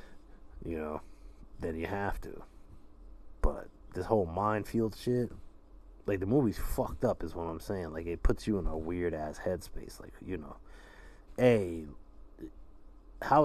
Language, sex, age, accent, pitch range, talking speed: English, male, 30-49, American, 80-100 Hz, 150 wpm